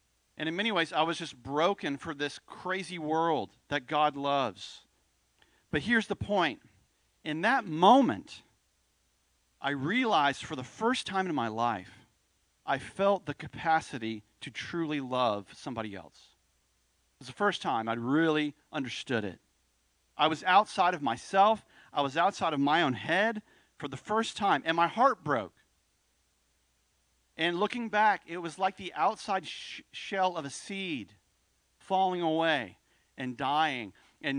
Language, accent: English, American